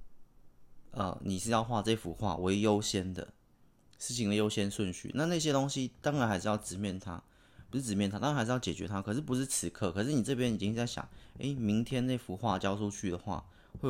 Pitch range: 95-120 Hz